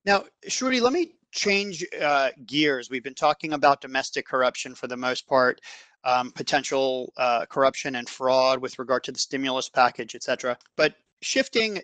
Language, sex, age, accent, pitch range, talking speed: English, male, 40-59, American, 130-155 Hz, 160 wpm